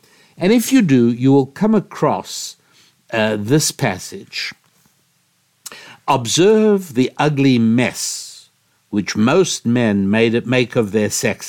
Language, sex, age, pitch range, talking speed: English, male, 60-79, 110-145 Hz, 125 wpm